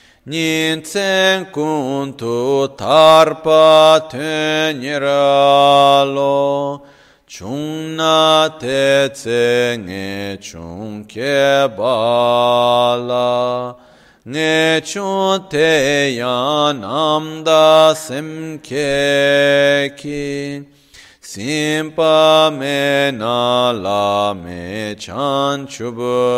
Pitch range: 125-155 Hz